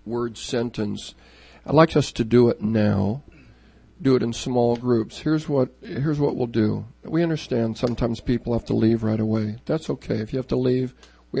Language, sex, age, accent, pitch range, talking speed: English, male, 50-69, American, 105-155 Hz, 195 wpm